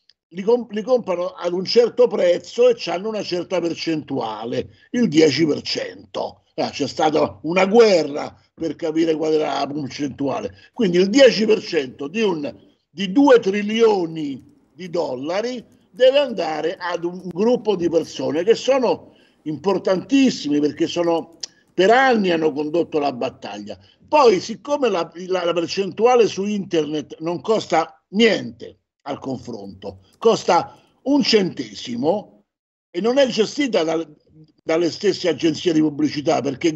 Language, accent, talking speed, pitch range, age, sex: Italian, native, 130 wpm, 155-230 Hz, 50-69, male